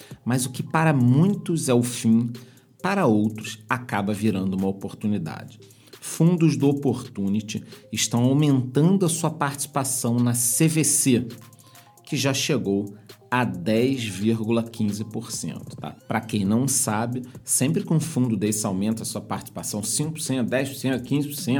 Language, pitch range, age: Portuguese, 105-130 Hz, 40-59